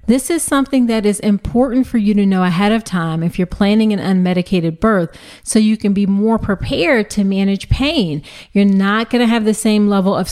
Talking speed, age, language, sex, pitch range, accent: 215 wpm, 30-49, English, female, 180-225 Hz, American